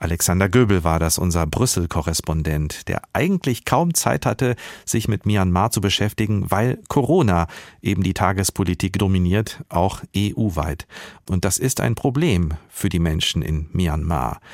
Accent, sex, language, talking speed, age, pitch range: German, male, German, 140 wpm, 50-69, 85-110 Hz